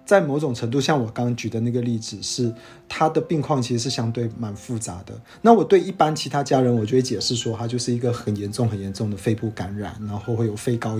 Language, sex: Chinese, male